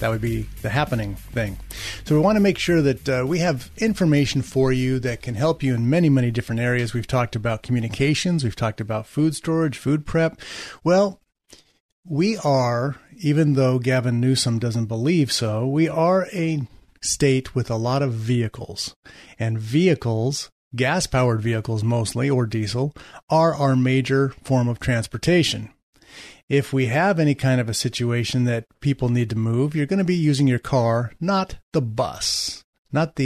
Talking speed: 175 wpm